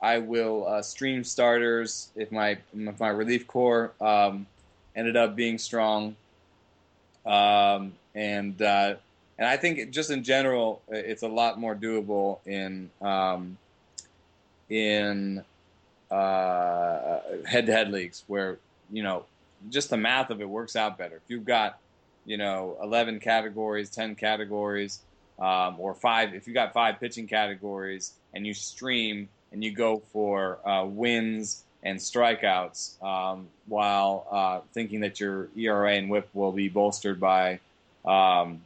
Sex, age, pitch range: male, 20-39, 95-110 Hz